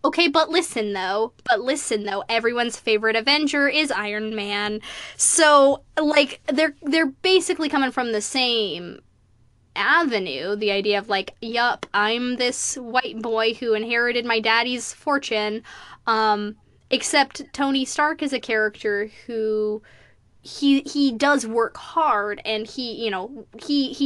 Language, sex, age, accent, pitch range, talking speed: English, female, 10-29, American, 210-275 Hz, 135 wpm